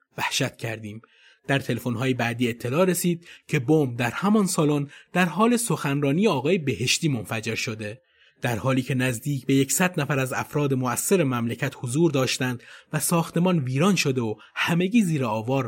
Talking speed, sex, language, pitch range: 155 wpm, male, Persian, 120-170 Hz